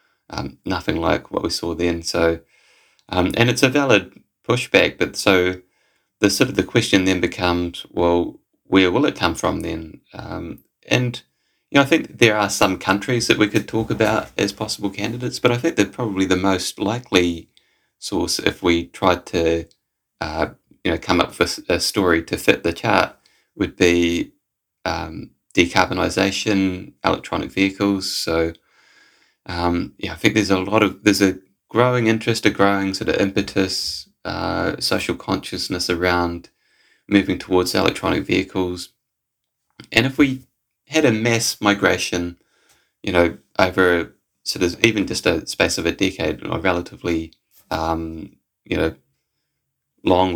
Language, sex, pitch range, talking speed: Swedish, male, 85-105 Hz, 155 wpm